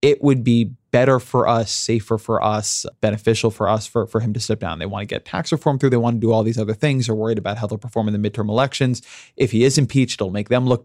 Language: English